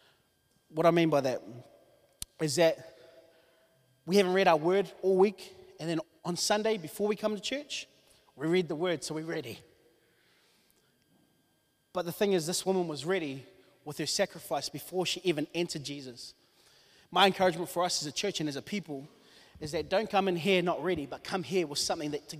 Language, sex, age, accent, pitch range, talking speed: English, male, 30-49, Australian, 160-205 Hz, 195 wpm